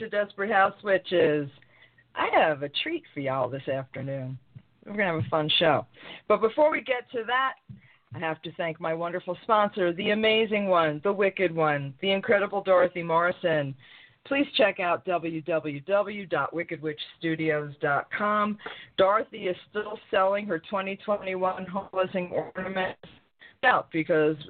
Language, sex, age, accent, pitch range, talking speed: English, female, 50-69, American, 160-215 Hz, 135 wpm